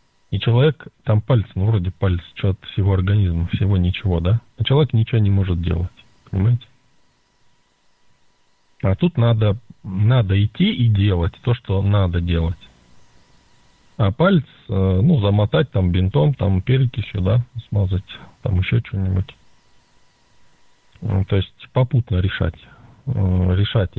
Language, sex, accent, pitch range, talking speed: Russian, male, native, 95-120 Hz, 125 wpm